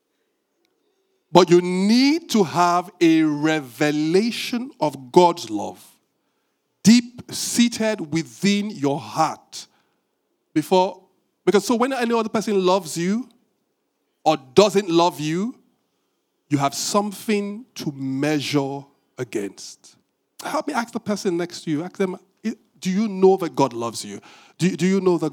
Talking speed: 135 wpm